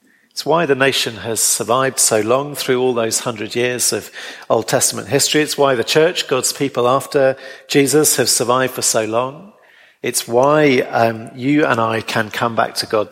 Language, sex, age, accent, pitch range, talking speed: English, male, 50-69, British, 115-145 Hz, 190 wpm